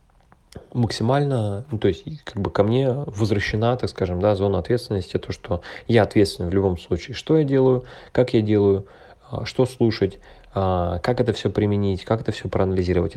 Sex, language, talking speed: male, Russian, 165 wpm